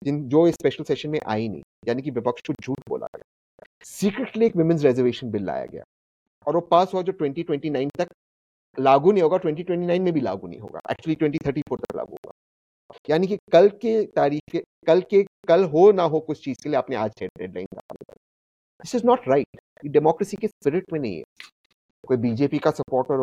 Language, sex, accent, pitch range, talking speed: English, male, Indian, 125-185 Hz, 110 wpm